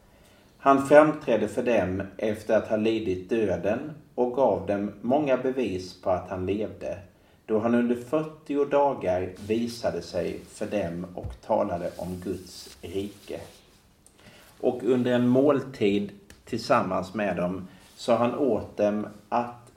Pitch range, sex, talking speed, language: 100-130 Hz, male, 135 wpm, Swedish